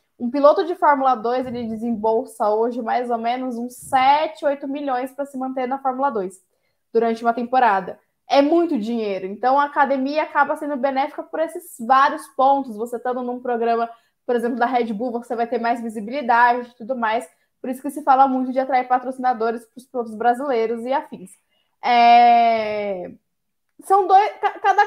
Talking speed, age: 175 wpm, 10-29